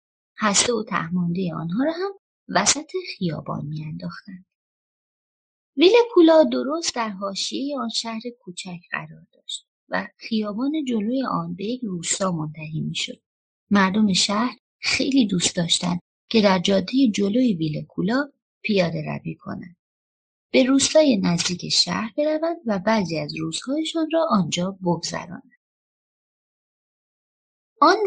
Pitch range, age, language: 175-275 Hz, 30-49, Persian